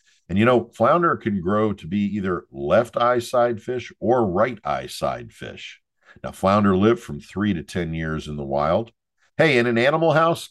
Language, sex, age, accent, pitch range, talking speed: English, male, 50-69, American, 95-135 Hz, 185 wpm